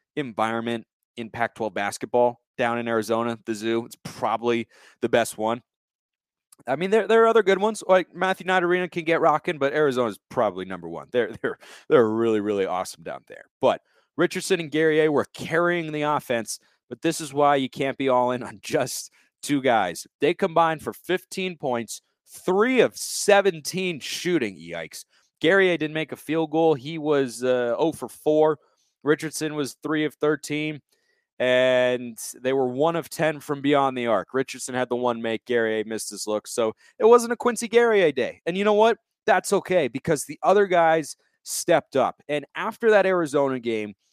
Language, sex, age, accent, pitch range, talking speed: English, male, 30-49, American, 125-175 Hz, 180 wpm